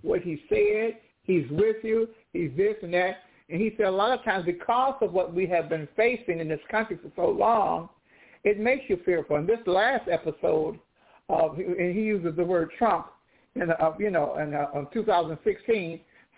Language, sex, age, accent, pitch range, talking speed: English, male, 60-79, American, 180-220 Hz, 190 wpm